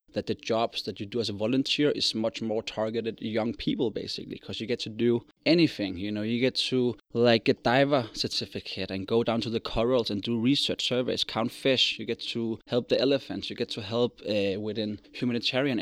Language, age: English, 20-39